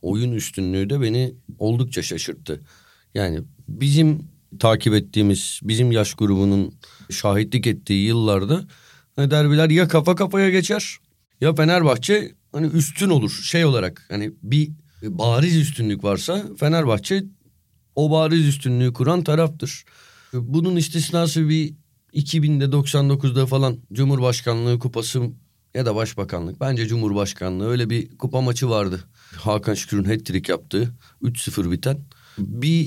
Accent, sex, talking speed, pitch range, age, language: native, male, 115 wpm, 115-155 Hz, 40-59, Turkish